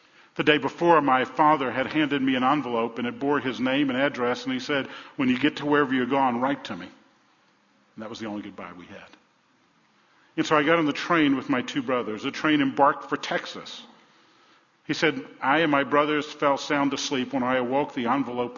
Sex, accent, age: male, American, 50-69